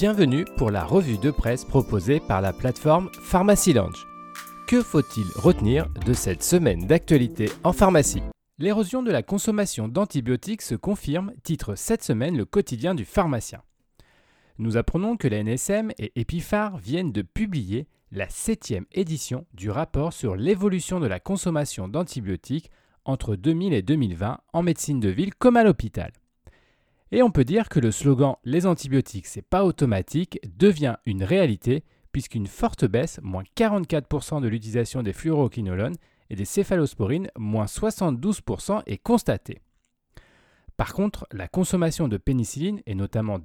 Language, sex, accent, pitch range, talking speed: French, male, French, 110-185 Hz, 145 wpm